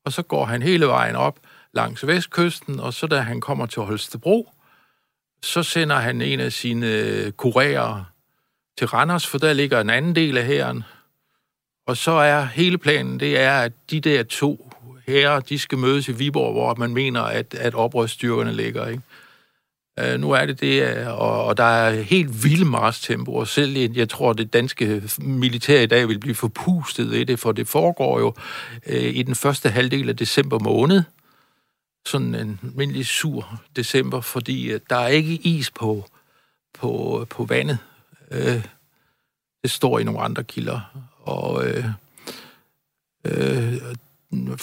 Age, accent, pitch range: 60-79, native, 115-145 Hz